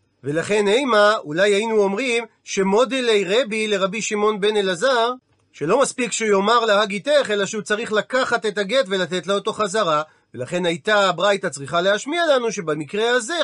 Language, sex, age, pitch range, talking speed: Hebrew, male, 40-59, 195-240 Hz, 155 wpm